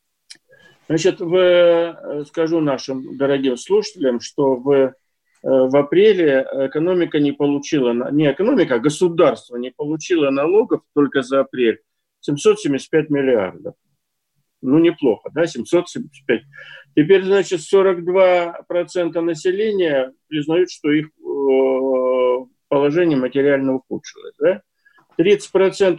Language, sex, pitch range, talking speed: Russian, male, 135-200 Hz, 90 wpm